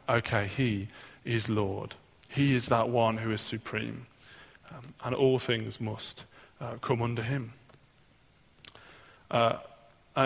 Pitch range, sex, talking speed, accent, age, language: 110-135 Hz, male, 125 wpm, British, 20-39, English